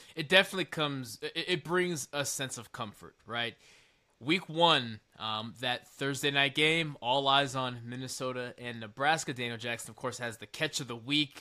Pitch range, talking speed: 120-150 Hz, 180 wpm